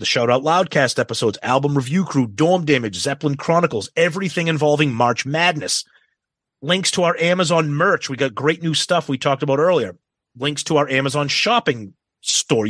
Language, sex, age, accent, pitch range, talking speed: English, male, 30-49, American, 130-160 Hz, 170 wpm